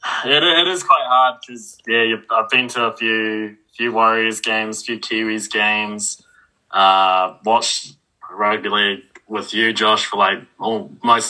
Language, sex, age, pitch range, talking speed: English, male, 20-39, 110-130 Hz, 160 wpm